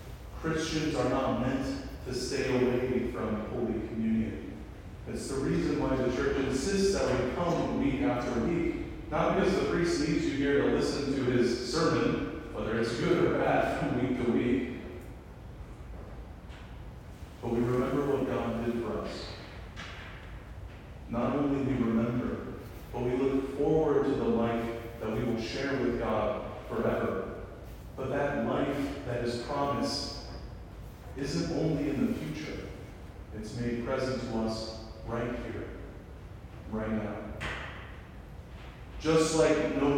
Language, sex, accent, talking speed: English, male, American, 140 wpm